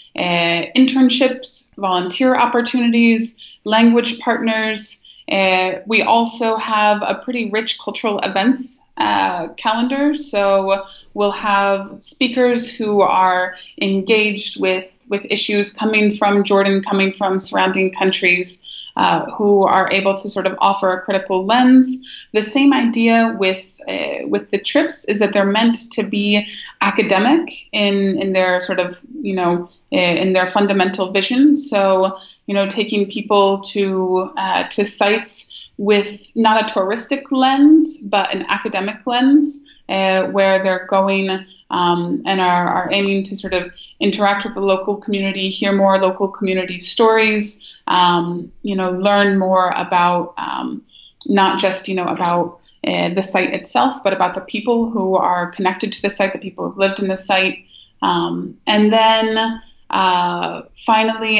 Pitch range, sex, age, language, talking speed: 190-225 Hz, female, 20-39, English, 150 wpm